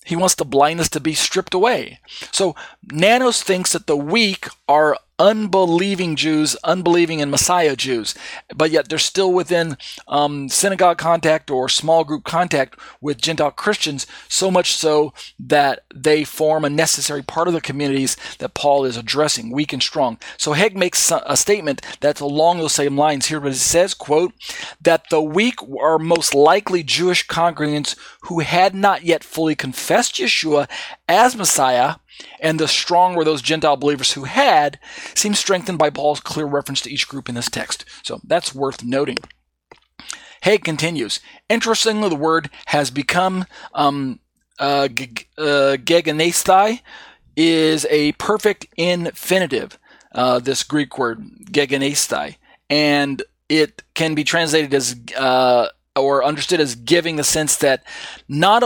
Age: 40-59